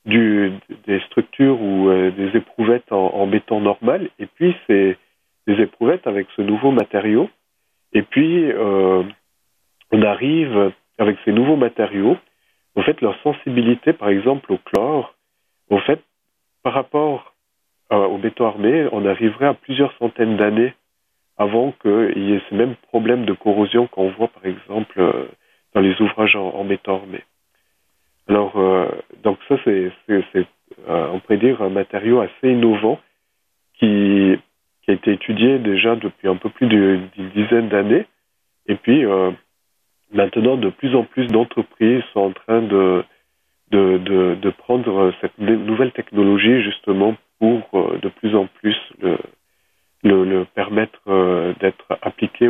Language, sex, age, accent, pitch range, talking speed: French, male, 40-59, French, 95-120 Hz, 150 wpm